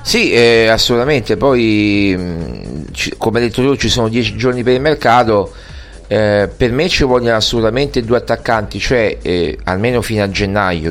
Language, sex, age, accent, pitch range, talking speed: Italian, male, 40-59, native, 100-125 Hz, 155 wpm